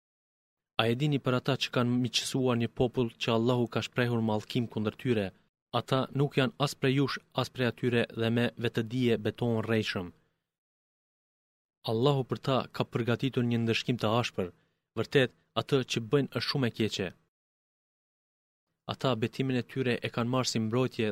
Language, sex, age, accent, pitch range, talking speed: Greek, male, 30-49, Turkish, 115-125 Hz, 155 wpm